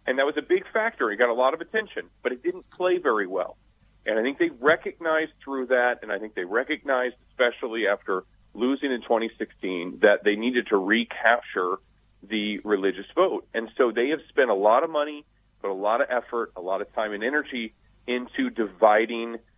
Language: English